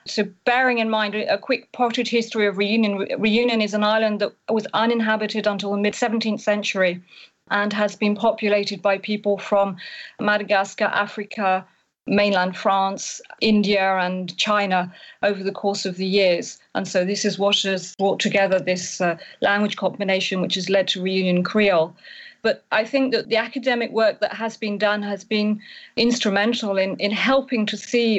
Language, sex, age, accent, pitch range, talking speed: English, female, 40-59, British, 195-220 Hz, 165 wpm